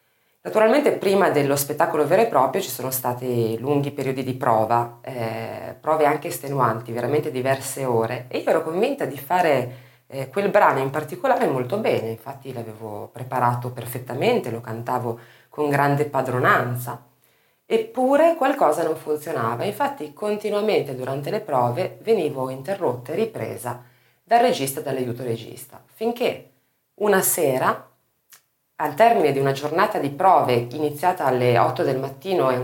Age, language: 30-49, Italian